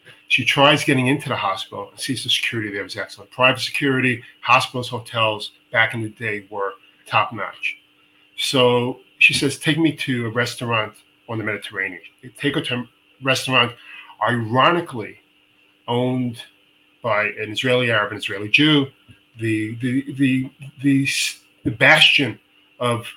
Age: 40-59